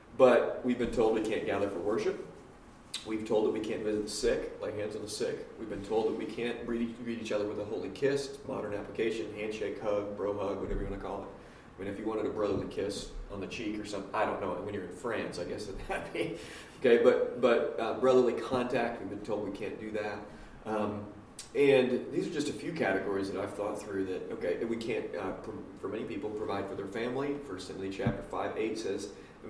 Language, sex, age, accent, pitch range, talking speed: English, male, 30-49, American, 105-130 Hz, 245 wpm